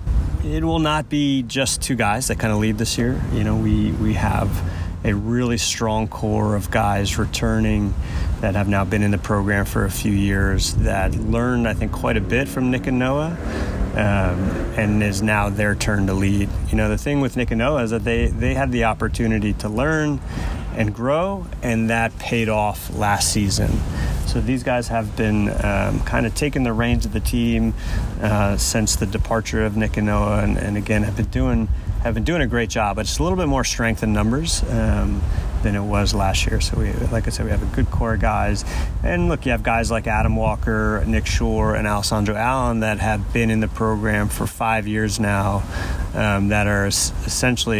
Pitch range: 100-115 Hz